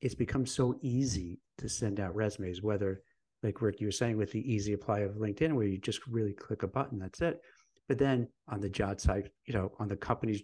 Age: 50-69